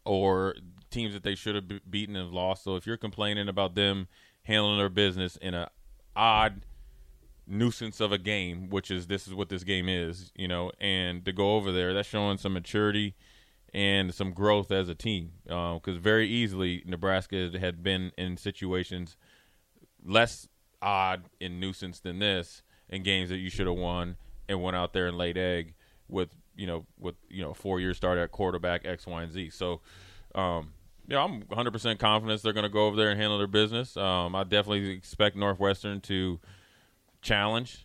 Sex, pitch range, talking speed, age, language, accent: male, 90-100 Hz, 190 wpm, 20-39, English, American